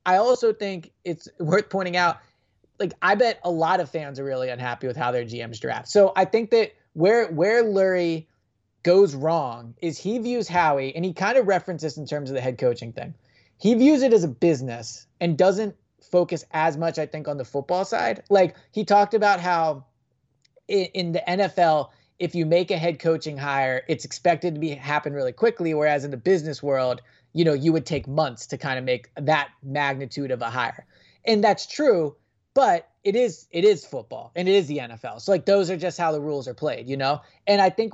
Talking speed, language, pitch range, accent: 215 wpm, English, 140-190 Hz, American